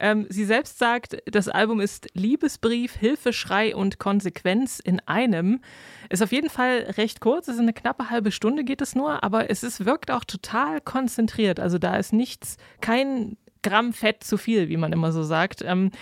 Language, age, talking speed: German, 20-39, 185 wpm